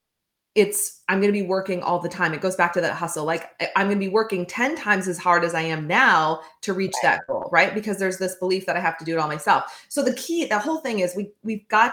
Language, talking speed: English, 285 wpm